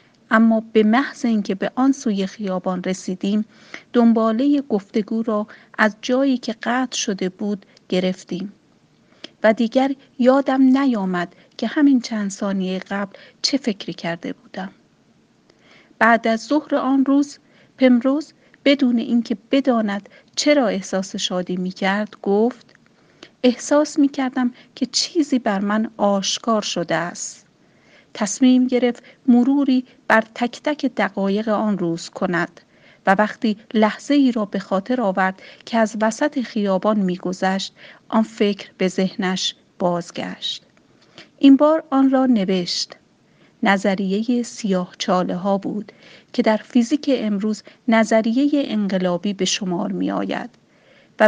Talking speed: 120 wpm